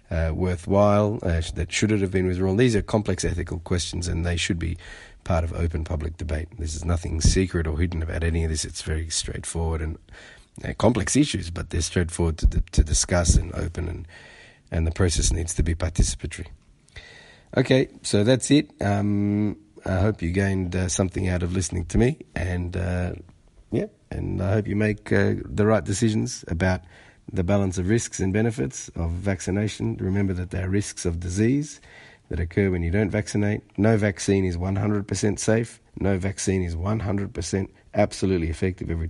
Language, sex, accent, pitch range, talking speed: English, male, Australian, 85-105 Hz, 185 wpm